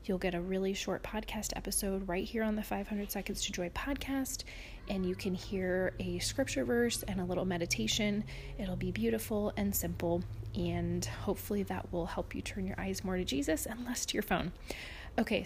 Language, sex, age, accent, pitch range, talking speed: English, female, 30-49, American, 180-235 Hz, 195 wpm